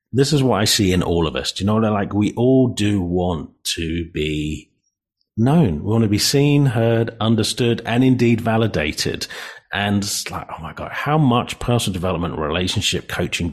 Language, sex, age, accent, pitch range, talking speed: English, male, 40-59, British, 95-125 Hz, 195 wpm